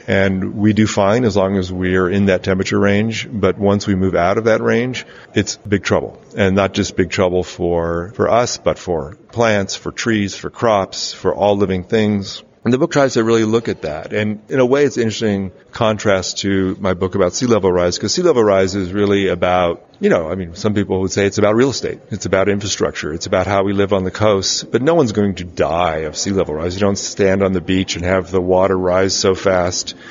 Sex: male